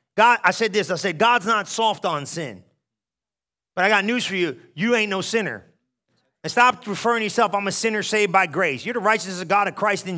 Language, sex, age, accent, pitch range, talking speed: English, male, 30-49, American, 170-220 Hz, 235 wpm